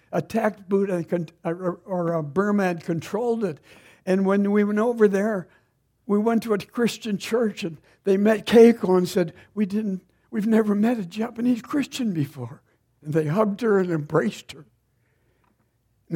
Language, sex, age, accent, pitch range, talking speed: English, male, 60-79, American, 155-220 Hz, 155 wpm